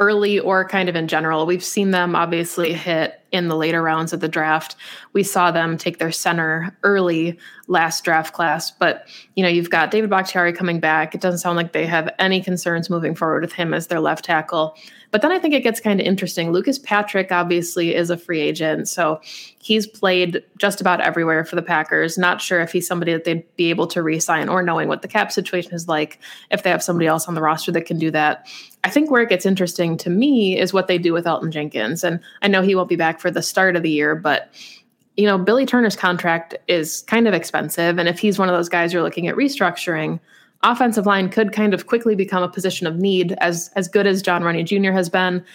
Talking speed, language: 235 wpm, English